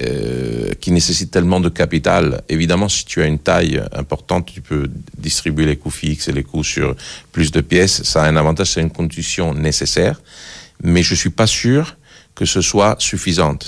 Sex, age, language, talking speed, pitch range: male, 50-69, French, 190 wpm, 75-95 Hz